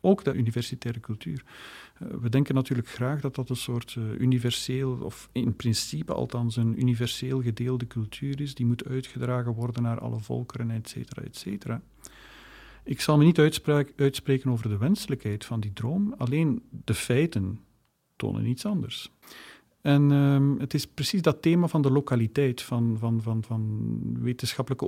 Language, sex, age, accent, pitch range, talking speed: Dutch, male, 40-59, Dutch, 115-140 Hz, 150 wpm